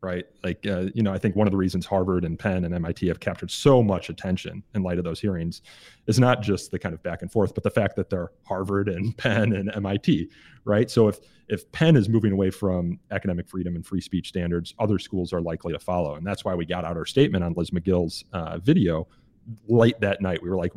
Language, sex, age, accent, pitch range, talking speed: English, male, 30-49, American, 95-110 Hz, 245 wpm